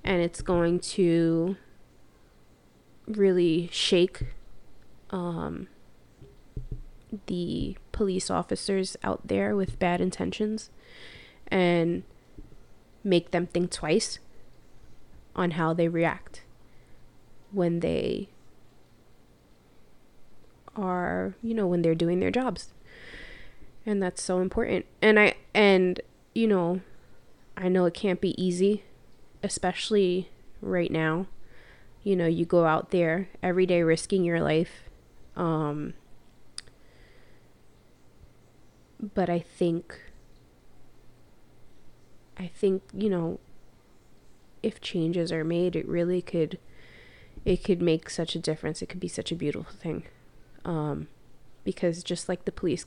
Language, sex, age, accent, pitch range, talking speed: English, female, 20-39, American, 160-185 Hz, 110 wpm